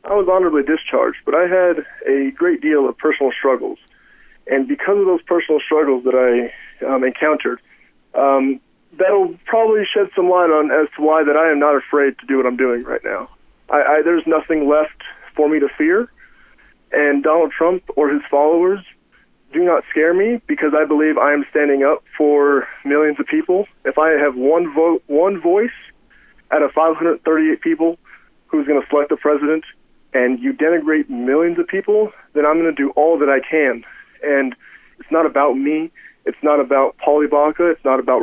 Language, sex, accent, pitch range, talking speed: English, male, American, 145-200 Hz, 185 wpm